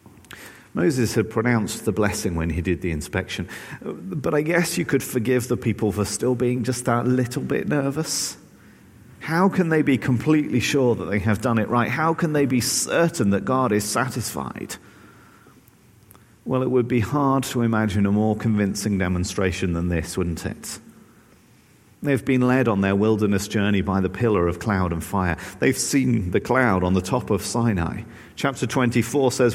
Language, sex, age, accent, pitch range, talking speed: English, male, 40-59, British, 100-130 Hz, 180 wpm